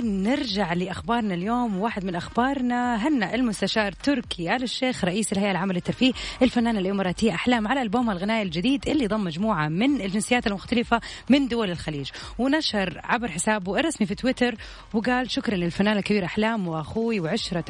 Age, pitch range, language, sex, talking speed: 30-49, 190-240 Hz, Arabic, female, 150 wpm